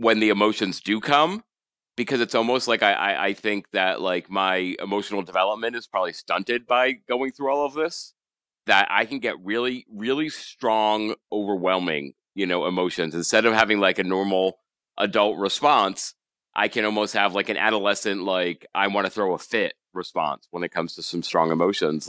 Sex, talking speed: male, 185 wpm